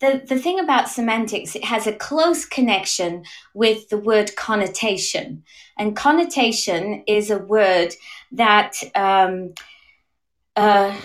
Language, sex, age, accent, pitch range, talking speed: English, female, 30-49, British, 195-260 Hz, 120 wpm